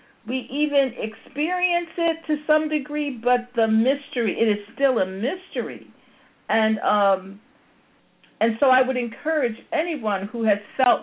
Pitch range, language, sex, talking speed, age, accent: 220-295 Hz, English, female, 140 wpm, 50-69, American